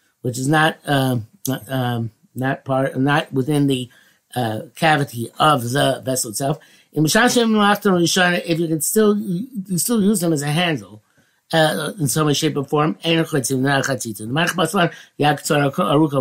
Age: 50-69